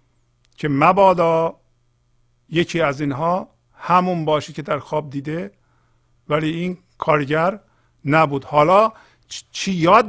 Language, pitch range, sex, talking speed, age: Persian, 125-170 Hz, male, 105 wpm, 50-69